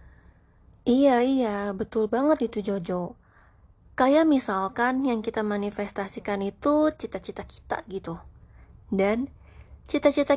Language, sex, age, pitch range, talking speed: Indonesian, female, 20-39, 205-275 Hz, 100 wpm